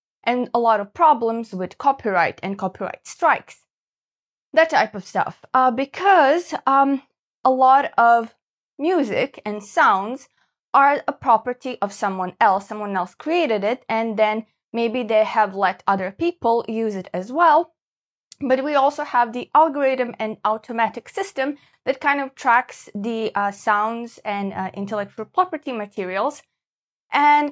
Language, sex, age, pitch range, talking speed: English, female, 20-39, 205-270 Hz, 145 wpm